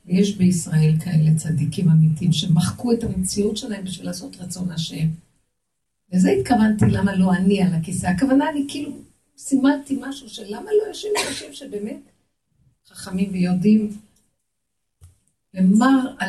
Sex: female